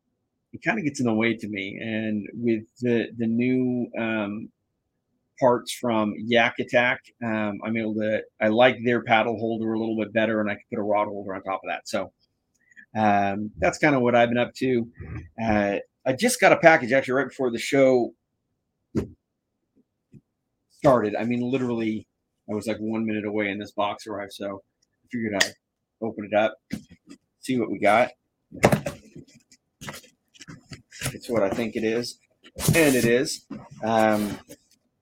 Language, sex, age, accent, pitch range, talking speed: English, male, 30-49, American, 105-120 Hz, 170 wpm